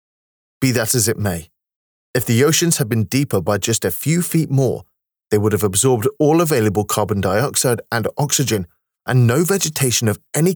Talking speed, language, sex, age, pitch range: 175 wpm, Urdu, male, 30-49, 110-150 Hz